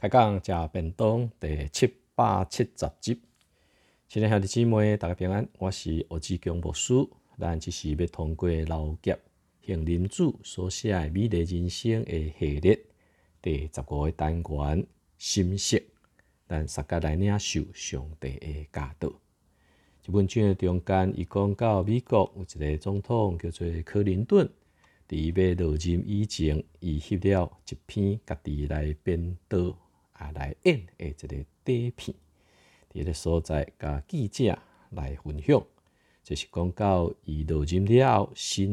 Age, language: 50-69, Chinese